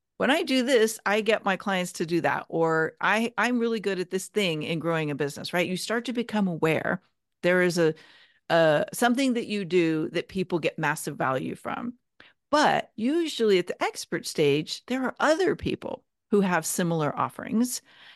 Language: English